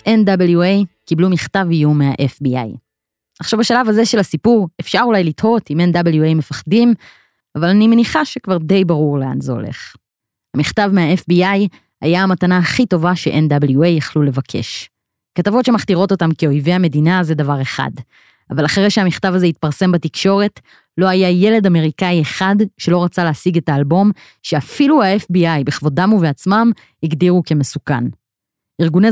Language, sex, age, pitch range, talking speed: Hebrew, female, 20-39, 155-195 Hz, 135 wpm